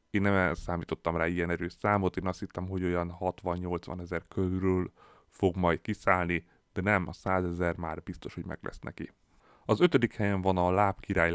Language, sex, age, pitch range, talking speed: Hungarian, male, 30-49, 85-100 Hz, 185 wpm